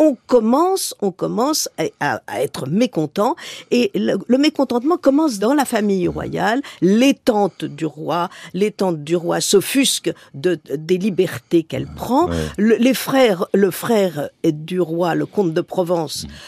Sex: female